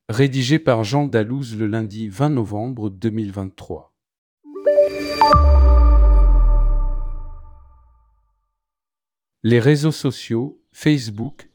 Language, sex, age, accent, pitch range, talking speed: French, male, 50-69, French, 105-125 Hz, 70 wpm